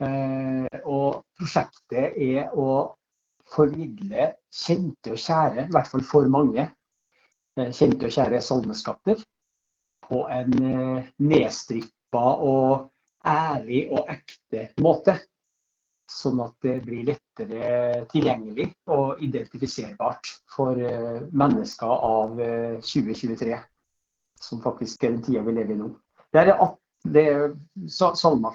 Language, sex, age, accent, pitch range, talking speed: English, male, 60-79, Norwegian, 120-145 Hz, 100 wpm